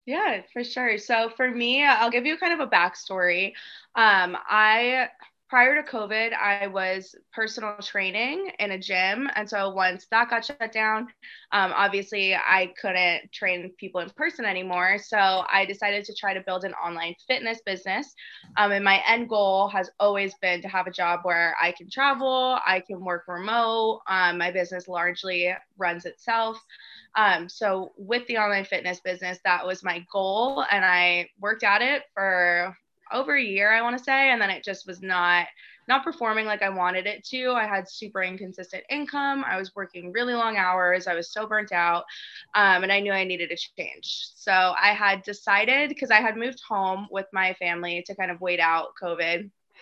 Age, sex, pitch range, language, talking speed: 20-39, female, 185-225 Hz, English, 190 wpm